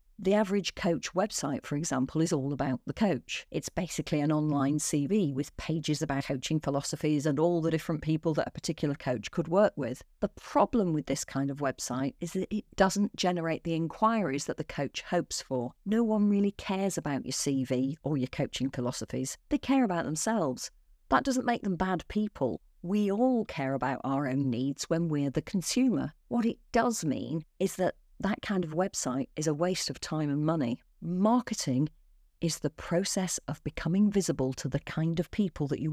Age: 50-69